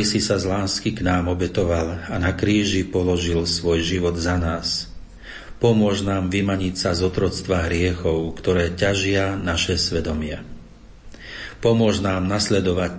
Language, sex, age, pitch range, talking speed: Slovak, male, 40-59, 85-95 Hz, 135 wpm